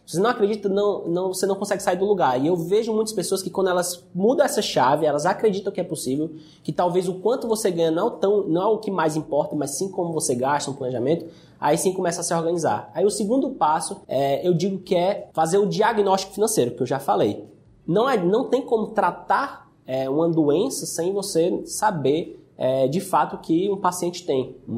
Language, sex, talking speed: Portuguese, male, 205 wpm